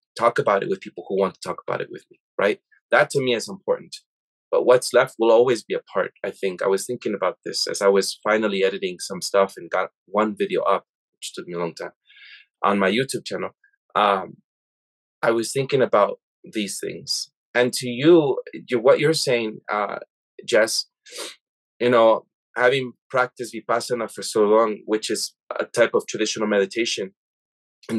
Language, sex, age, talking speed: English, male, 20-39, 190 wpm